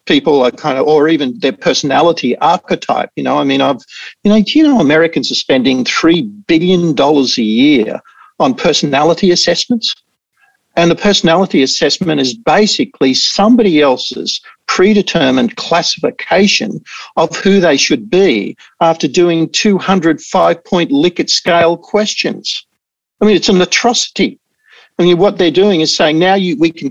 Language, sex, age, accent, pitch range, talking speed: English, male, 50-69, Australian, 145-210 Hz, 150 wpm